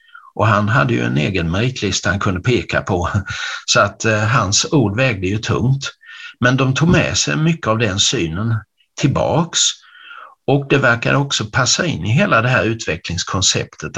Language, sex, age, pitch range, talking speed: Swedish, male, 60-79, 105-140 Hz, 170 wpm